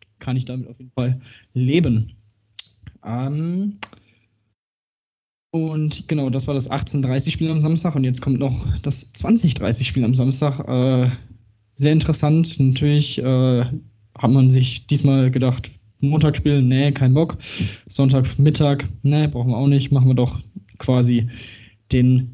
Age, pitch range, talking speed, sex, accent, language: 20-39, 115-145 Hz, 130 wpm, male, German, German